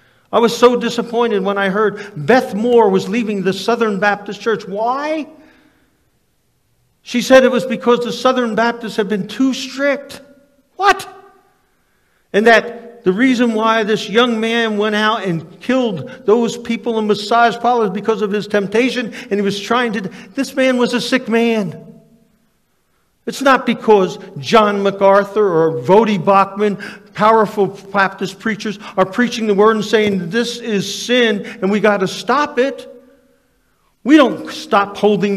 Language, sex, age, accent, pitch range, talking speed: English, male, 50-69, American, 200-240 Hz, 155 wpm